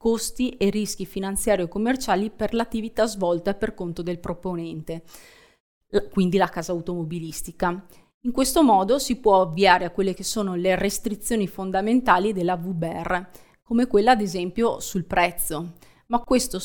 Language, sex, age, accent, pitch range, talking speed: Italian, female, 30-49, native, 175-215 Hz, 145 wpm